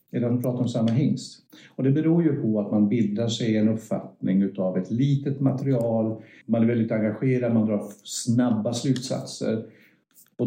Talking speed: 165 wpm